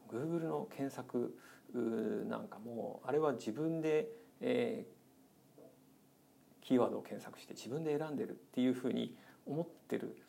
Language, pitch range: Japanese, 130-195 Hz